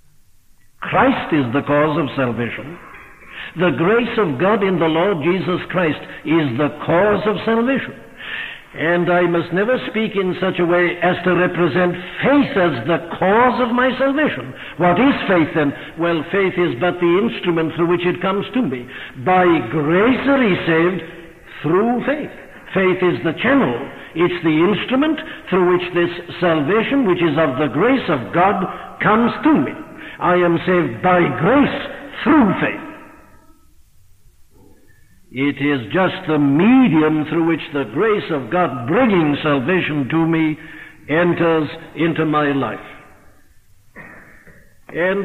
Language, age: English, 60-79